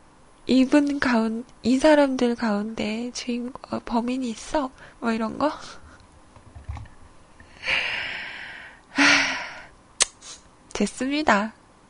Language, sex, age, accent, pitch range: Korean, female, 20-39, native, 220-280 Hz